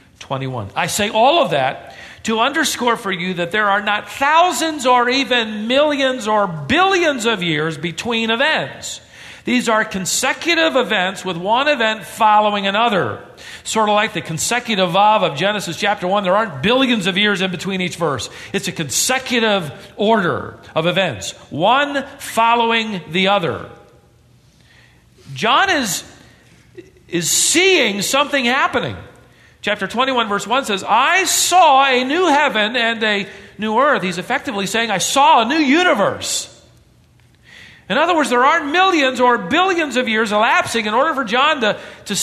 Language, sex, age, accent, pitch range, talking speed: English, male, 50-69, American, 195-275 Hz, 150 wpm